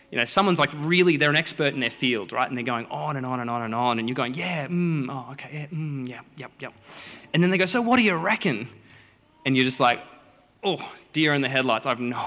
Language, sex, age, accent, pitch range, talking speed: English, male, 20-39, Australian, 125-160 Hz, 280 wpm